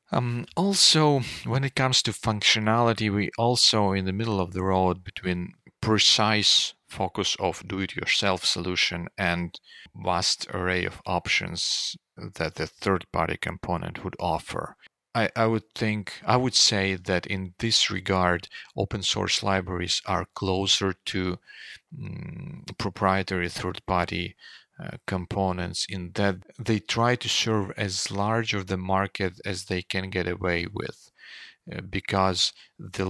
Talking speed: 140 wpm